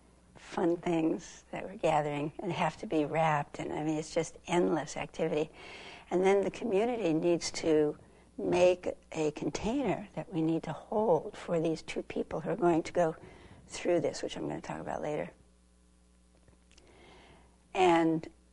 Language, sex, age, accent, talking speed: English, female, 60-79, American, 160 wpm